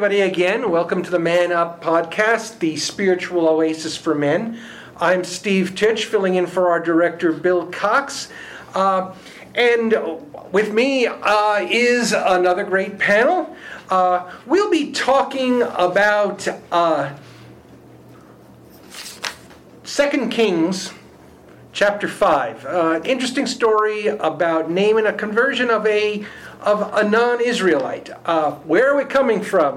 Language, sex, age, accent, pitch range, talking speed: English, male, 50-69, American, 170-225 Hz, 120 wpm